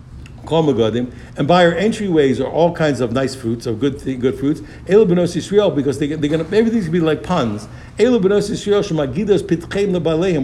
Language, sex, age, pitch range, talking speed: English, male, 60-79, 140-180 Hz, 200 wpm